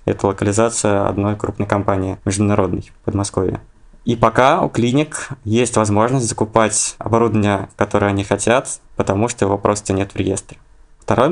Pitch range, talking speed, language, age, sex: 105-115 Hz, 145 wpm, Russian, 20-39, male